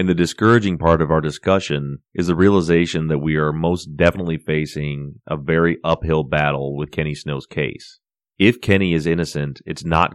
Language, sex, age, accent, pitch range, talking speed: English, male, 30-49, American, 75-90 Hz, 175 wpm